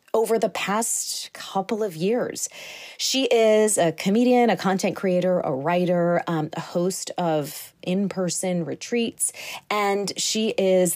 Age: 30-49